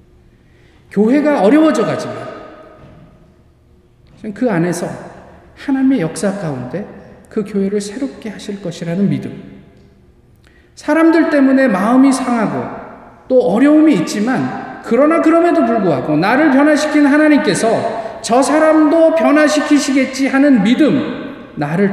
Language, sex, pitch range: Korean, male, 150-230 Hz